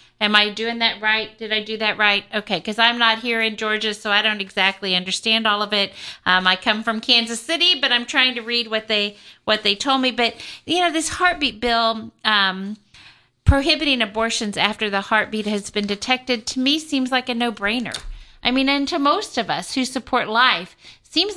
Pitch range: 215-255 Hz